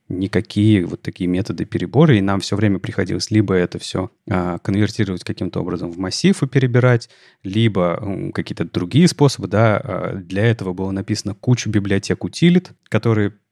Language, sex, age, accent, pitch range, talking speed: Russian, male, 30-49, native, 100-125 Hz, 145 wpm